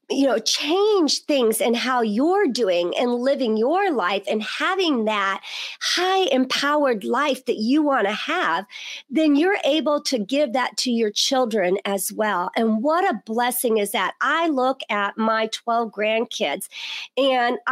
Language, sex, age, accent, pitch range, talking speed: English, female, 40-59, American, 220-285 Hz, 160 wpm